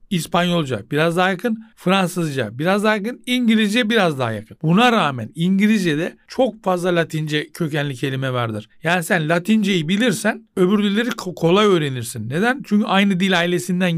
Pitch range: 150-205 Hz